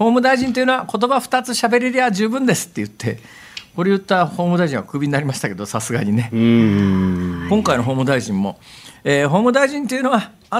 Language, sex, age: Japanese, male, 50-69